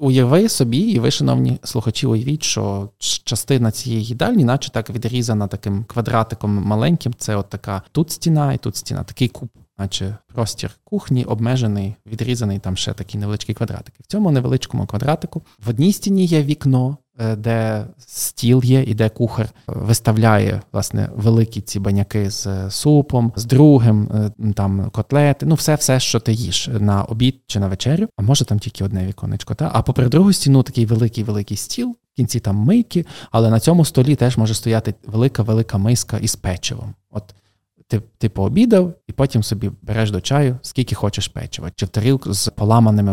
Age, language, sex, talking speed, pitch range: 20-39, Ukrainian, male, 165 wpm, 105-130 Hz